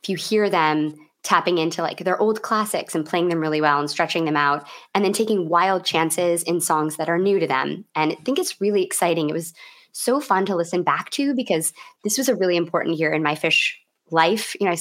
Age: 20-39